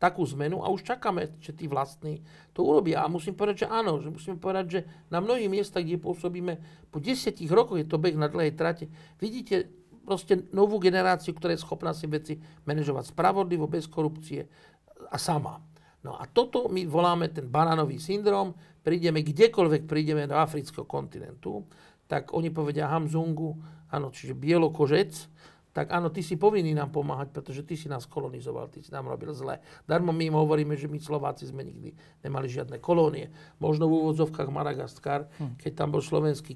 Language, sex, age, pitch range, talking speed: Slovak, male, 50-69, 150-180 Hz, 175 wpm